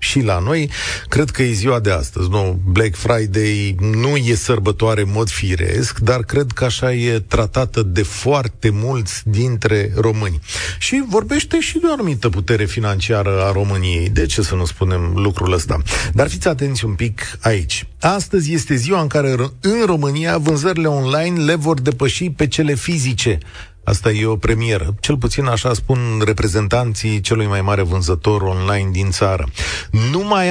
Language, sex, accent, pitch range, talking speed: Romanian, male, native, 100-140 Hz, 165 wpm